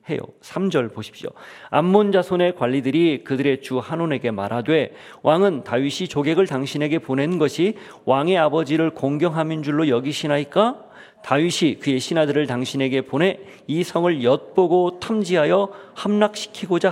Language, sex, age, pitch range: Korean, male, 40-59, 135-185 Hz